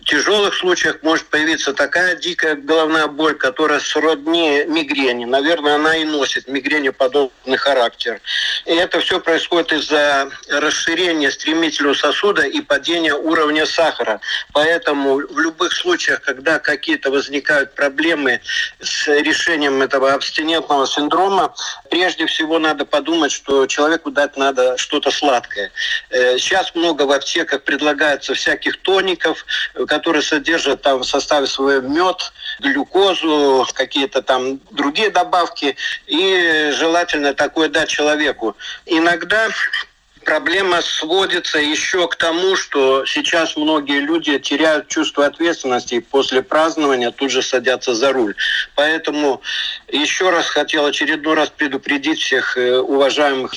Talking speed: 120 wpm